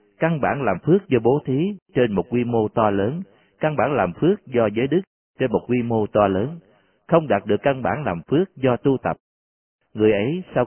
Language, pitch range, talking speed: Vietnamese, 110-140 Hz, 220 wpm